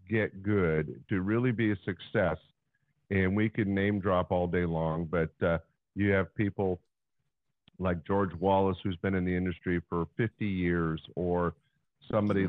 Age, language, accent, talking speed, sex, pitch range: 50-69, English, American, 160 wpm, male, 90-110 Hz